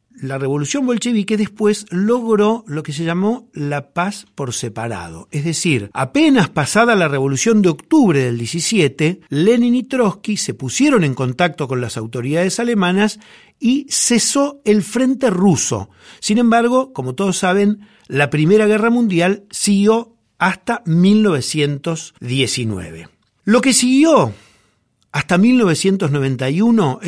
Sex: male